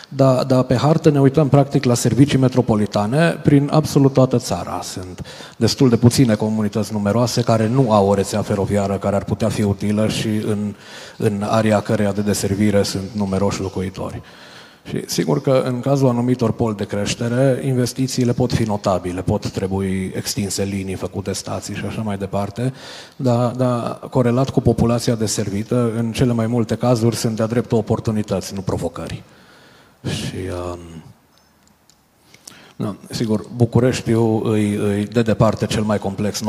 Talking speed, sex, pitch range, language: 145 wpm, male, 100-130 Hz, Romanian